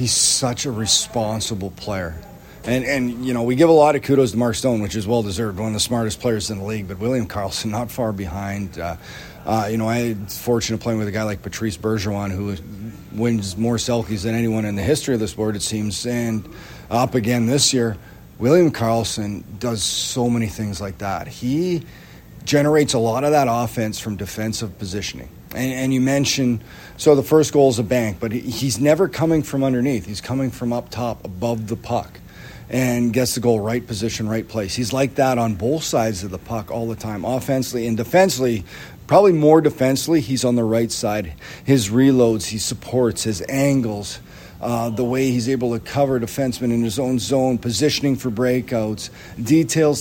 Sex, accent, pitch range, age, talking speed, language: male, American, 110-135 Hz, 40-59, 200 wpm, English